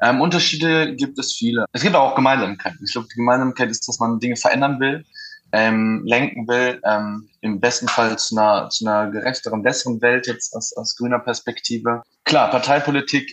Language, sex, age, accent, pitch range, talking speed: German, male, 20-39, German, 105-130 Hz, 175 wpm